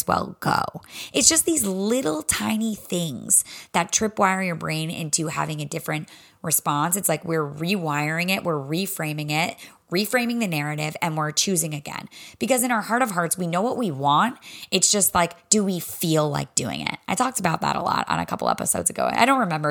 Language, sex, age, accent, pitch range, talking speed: English, female, 20-39, American, 155-225 Hz, 200 wpm